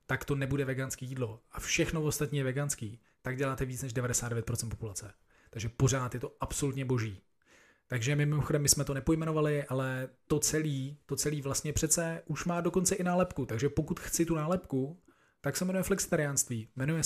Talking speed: 180 wpm